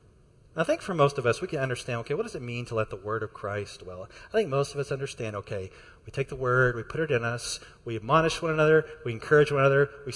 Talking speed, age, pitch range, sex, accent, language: 270 wpm, 40-59, 120-155 Hz, male, American, English